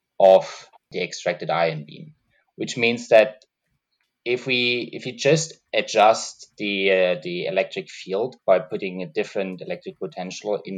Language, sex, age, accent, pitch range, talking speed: English, male, 20-39, German, 95-155 Hz, 145 wpm